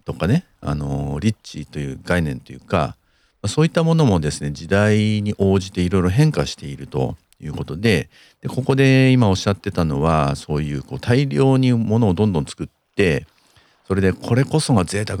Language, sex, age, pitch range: Japanese, male, 50-69, 80-120 Hz